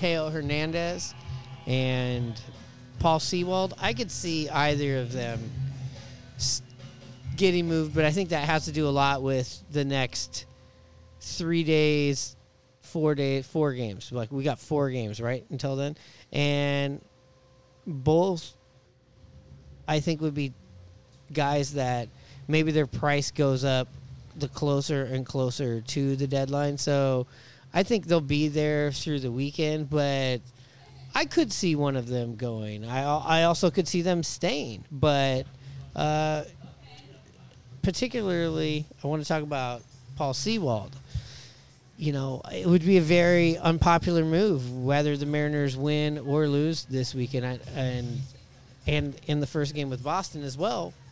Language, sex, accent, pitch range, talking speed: English, male, American, 130-155 Hz, 140 wpm